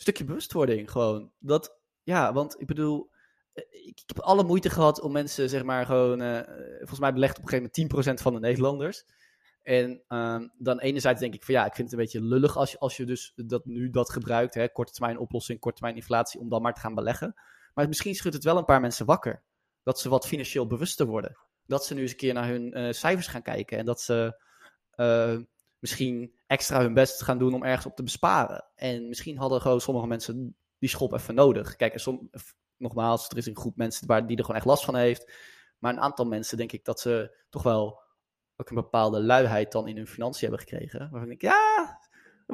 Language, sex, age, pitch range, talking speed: Dutch, male, 20-39, 120-140 Hz, 225 wpm